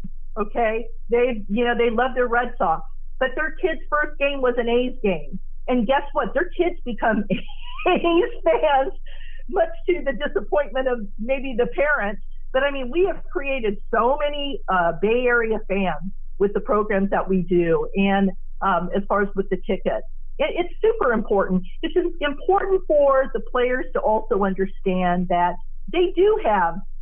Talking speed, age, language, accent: 165 wpm, 50-69, English, American